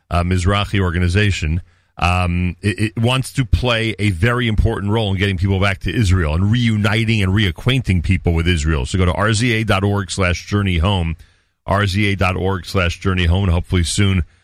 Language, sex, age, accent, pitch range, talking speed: English, male, 40-59, American, 90-130 Hz, 160 wpm